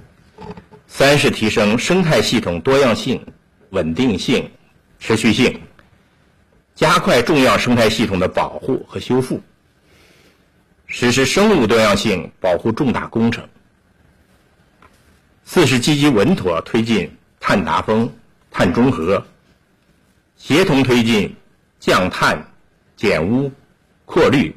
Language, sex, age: Chinese, male, 60-79